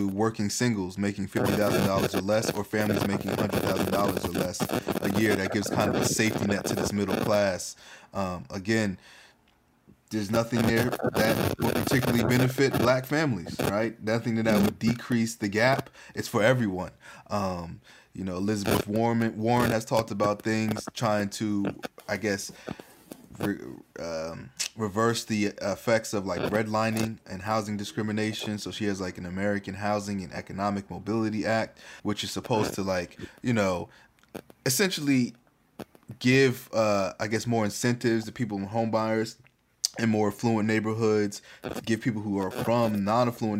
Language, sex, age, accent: English, male, 20-39, American